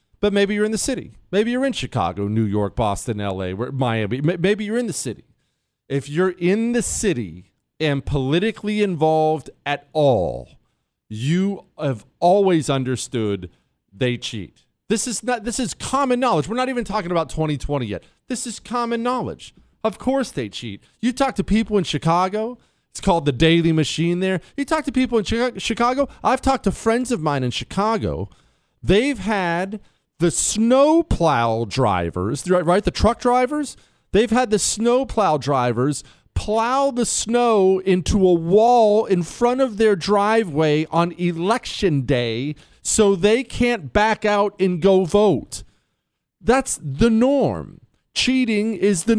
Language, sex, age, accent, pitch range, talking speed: English, male, 40-59, American, 140-225 Hz, 150 wpm